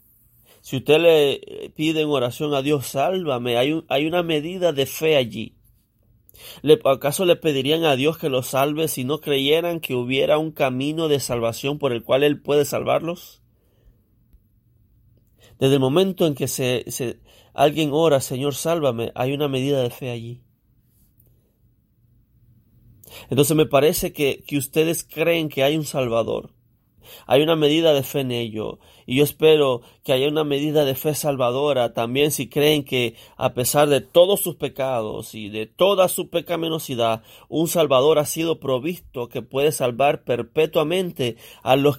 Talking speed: 155 wpm